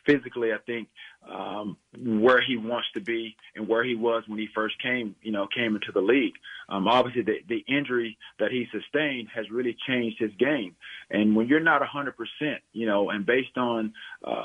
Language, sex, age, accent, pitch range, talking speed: English, male, 40-59, American, 115-130 Hz, 195 wpm